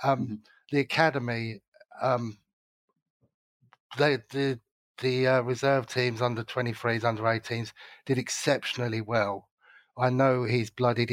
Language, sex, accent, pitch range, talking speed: English, male, British, 110-125 Hz, 110 wpm